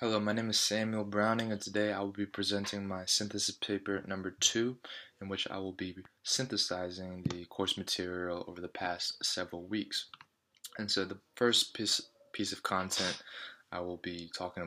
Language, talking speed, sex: English, 170 wpm, male